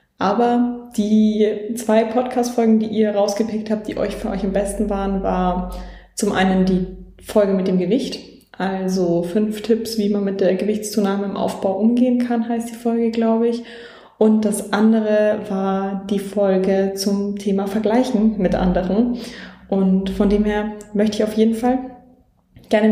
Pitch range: 195-225 Hz